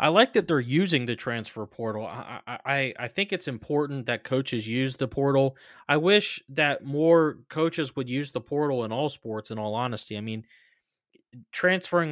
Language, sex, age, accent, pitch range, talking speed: English, male, 20-39, American, 115-145 Hz, 185 wpm